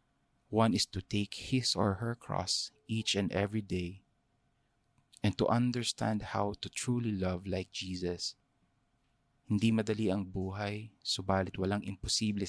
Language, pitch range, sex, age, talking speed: English, 95-115 Hz, male, 20-39, 135 wpm